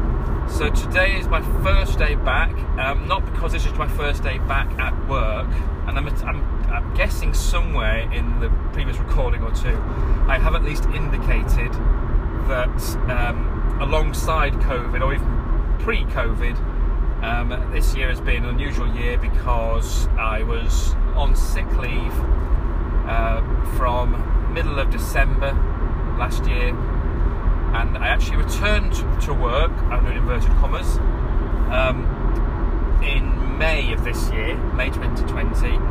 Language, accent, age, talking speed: English, British, 30-49, 130 wpm